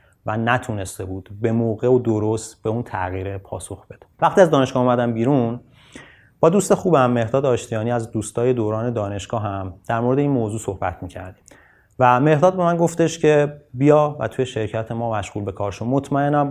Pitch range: 105-130 Hz